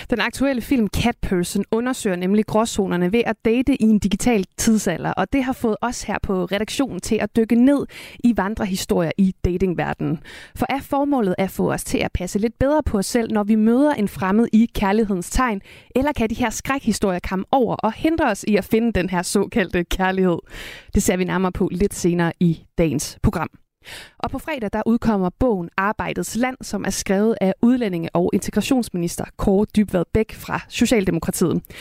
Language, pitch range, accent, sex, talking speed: Danish, 190-240 Hz, native, female, 185 wpm